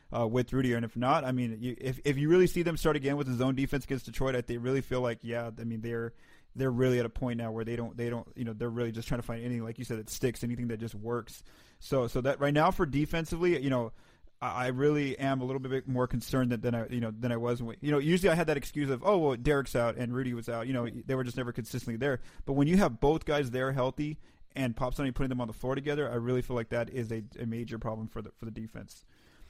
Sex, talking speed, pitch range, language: male, 290 wpm, 120-150 Hz, English